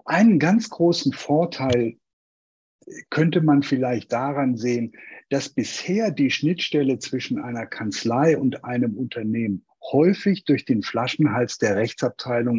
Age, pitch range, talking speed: 50-69, 115-155 Hz, 120 wpm